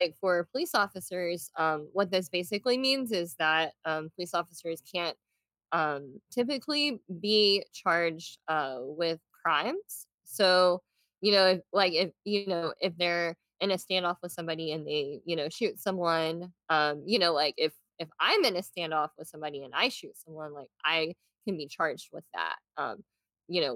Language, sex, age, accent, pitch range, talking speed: English, female, 20-39, American, 160-195 Hz, 170 wpm